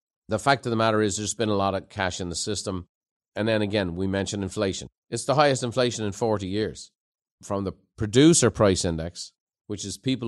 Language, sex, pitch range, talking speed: English, male, 105-130 Hz, 210 wpm